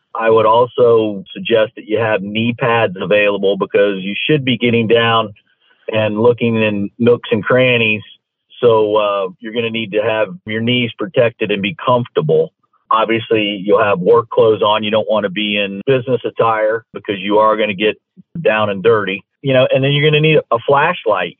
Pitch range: 110-155 Hz